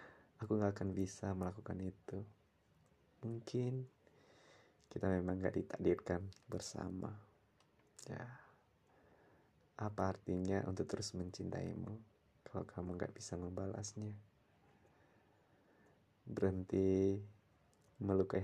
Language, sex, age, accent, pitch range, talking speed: Indonesian, male, 20-39, native, 95-110 Hz, 80 wpm